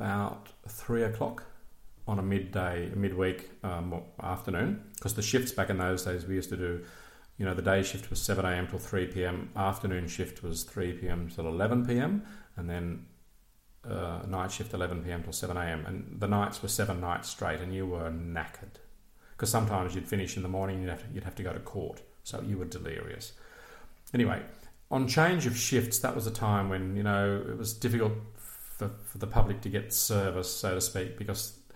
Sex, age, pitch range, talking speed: male, 40-59, 90-115 Hz, 200 wpm